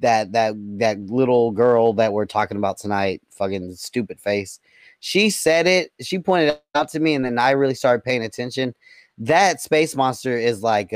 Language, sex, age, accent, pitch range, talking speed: English, male, 20-39, American, 115-140 Hz, 185 wpm